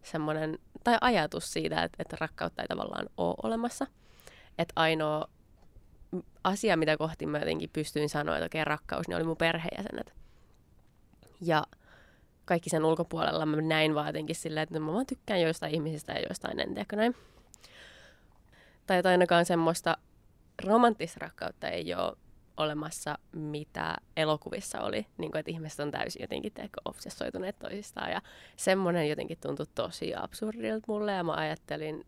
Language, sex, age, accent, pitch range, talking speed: Finnish, female, 20-39, native, 155-185 Hz, 140 wpm